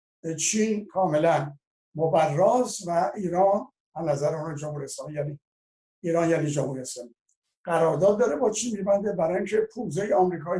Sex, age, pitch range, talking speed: male, 60-79, 145-180 Hz, 130 wpm